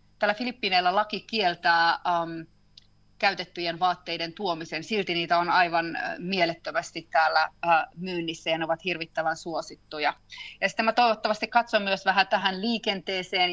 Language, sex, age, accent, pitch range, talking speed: Finnish, female, 30-49, native, 170-205 Hz, 135 wpm